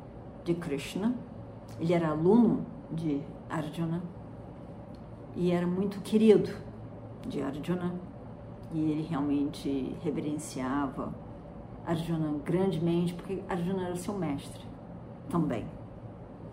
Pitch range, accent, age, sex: 160-225 Hz, Brazilian, 40-59, female